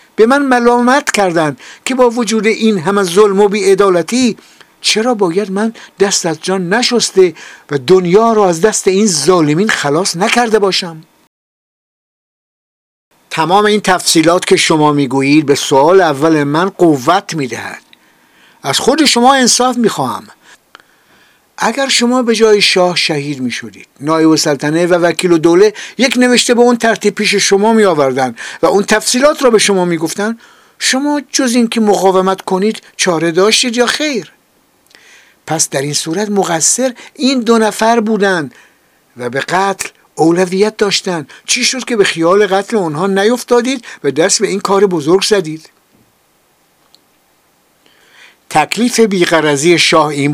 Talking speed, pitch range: 140 wpm, 165-220 Hz